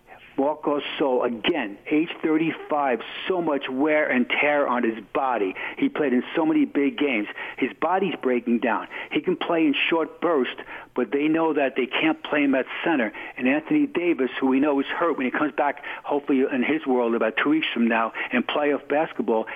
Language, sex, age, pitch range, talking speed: English, male, 60-79, 125-150 Hz, 195 wpm